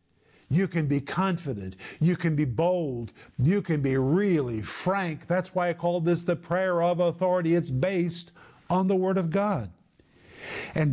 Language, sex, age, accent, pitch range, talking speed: English, male, 50-69, American, 170-205 Hz, 165 wpm